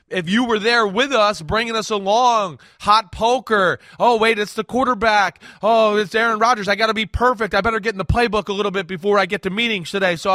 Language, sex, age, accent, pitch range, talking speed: English, male, 20-39, American, 165-220 Hz, 240 wpm